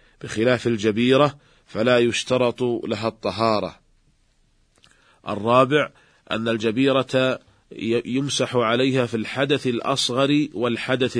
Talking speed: 80 wpm